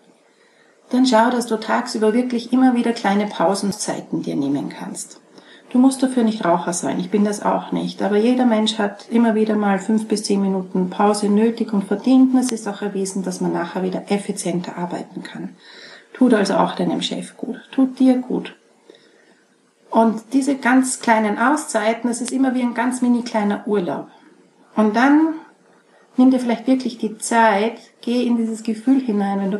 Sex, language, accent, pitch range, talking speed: female, German, Austrian, 200-245 Hz, 180 wpm